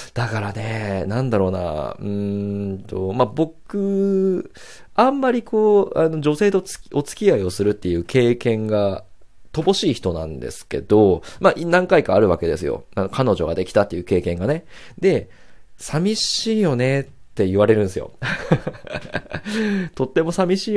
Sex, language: male, Japanese